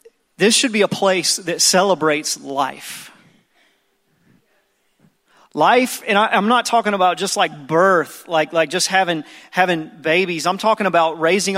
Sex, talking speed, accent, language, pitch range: male, 145 wpm, American, English, 160-195 Hz